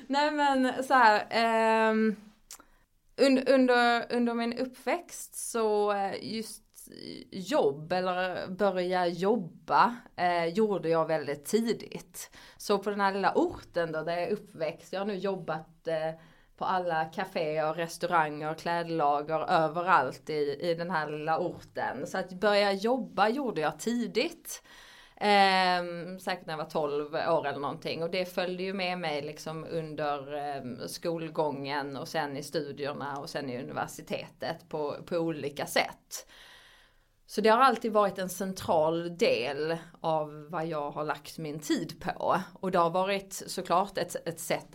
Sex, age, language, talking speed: female, 20-39, Swedish, 150 wpm